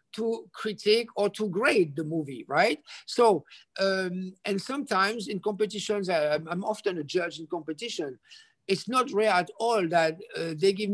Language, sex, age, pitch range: English, male, 50-69, 185-230 Hz